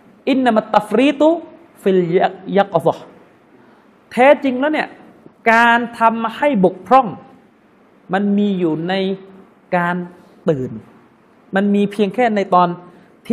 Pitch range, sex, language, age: 180-235 Hz, male, Thai, 30-49